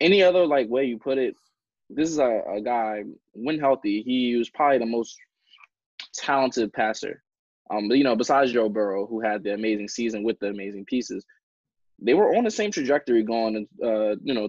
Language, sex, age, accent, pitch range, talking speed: English, male, 20-39, American, 105-135 Hz, 195 wpm